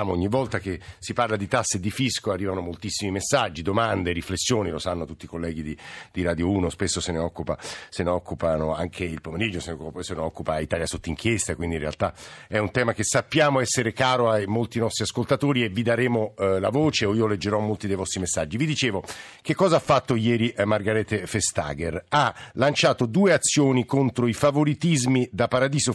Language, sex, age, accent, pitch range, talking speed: Italian, male, 50-69, native, 105-135 Hz, 190 wpm